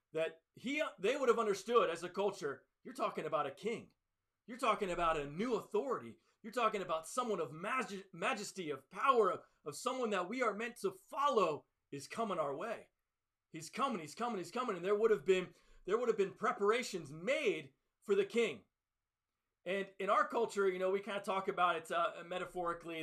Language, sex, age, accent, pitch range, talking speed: English, male, 40-59, American, 180-230 Hz, 195 wpm